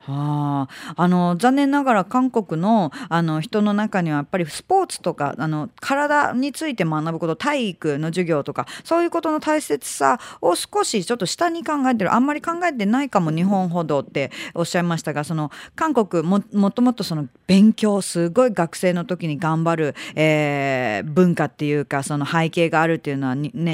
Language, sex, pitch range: Japanese, female, 155-235 Hz